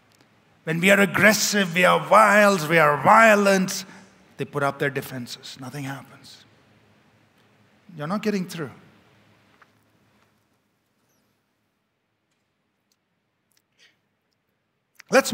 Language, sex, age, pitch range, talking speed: English, male, 50-69, 165-225 Hz, 85 wpm